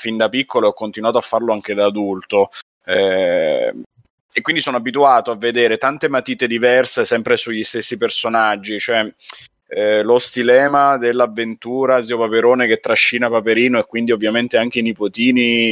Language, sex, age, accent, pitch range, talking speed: Italian, male, 30-49, native, 105-125 Hz, 155 wpm